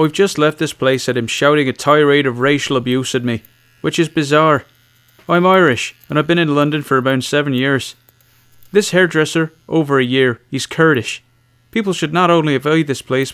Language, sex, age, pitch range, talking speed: English, male, 30-49, 120-170 Hz, 195 wpm